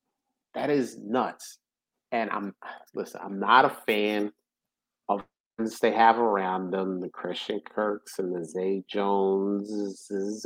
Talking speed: 130 wpm